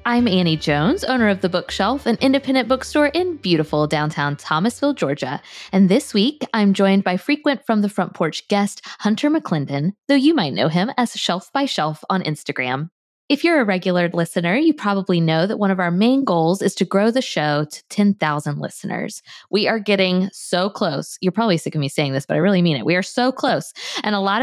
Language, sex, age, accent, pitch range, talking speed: English, female, 20-39, American, 165-235 Hz, 210 wpm